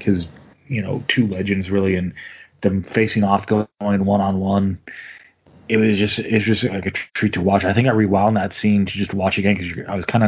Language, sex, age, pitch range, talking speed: English, male, 20-39, 100-130 Hz, 215 wpm